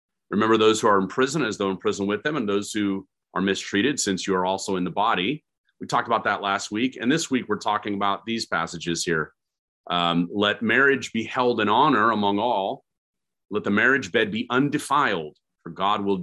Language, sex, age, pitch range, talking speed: English, male, 30-49, 90-105 Hz, 210 wpm